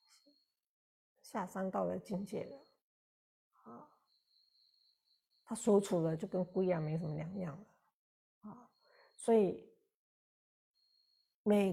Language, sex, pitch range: Chinese, female, 185-230 Hz